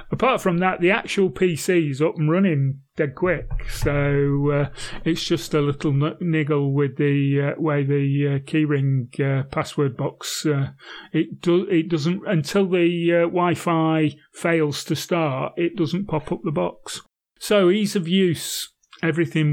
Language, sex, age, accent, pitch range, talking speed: English, male, 30-49, British, 145-170 Hz, 165 wpm